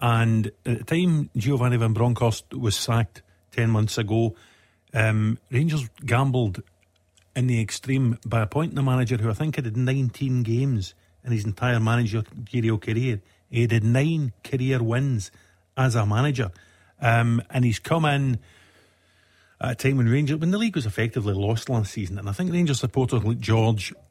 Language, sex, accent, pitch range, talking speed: English, male, British, 105-130 Hz, 170 wpm